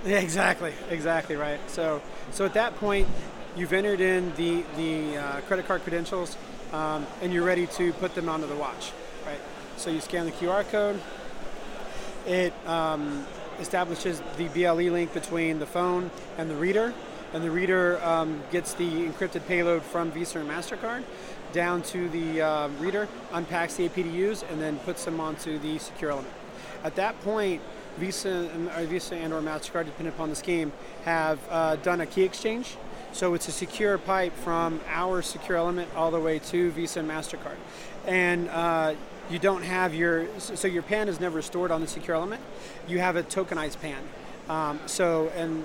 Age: 30-49